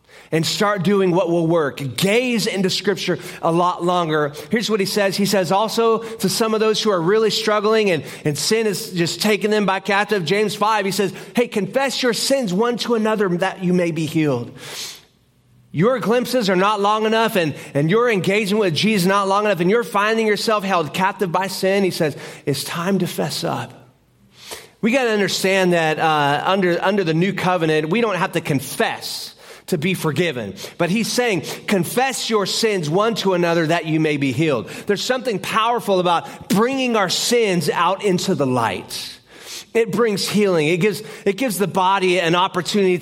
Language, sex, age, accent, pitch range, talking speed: English, male, 30-49, American, 170-215 Hz, 190 wpm